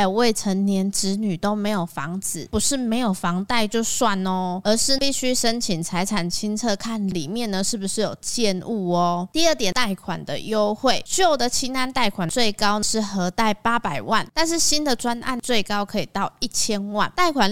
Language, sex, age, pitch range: Chinese, female, 20-39, 190-240 Hz